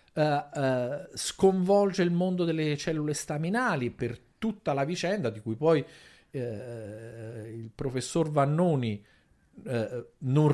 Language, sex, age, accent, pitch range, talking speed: Italian, male, 50-69, native, 110-175 Hz, 95 wpm